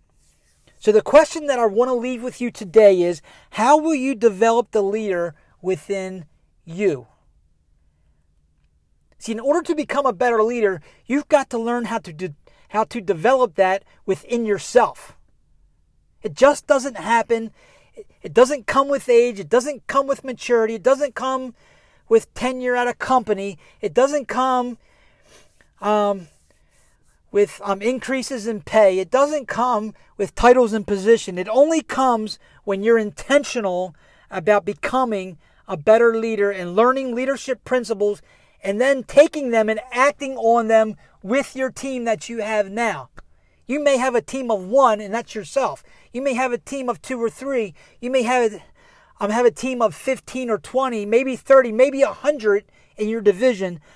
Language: English